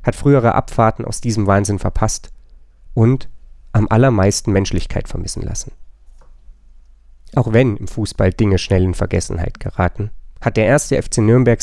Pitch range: 95-125 Hz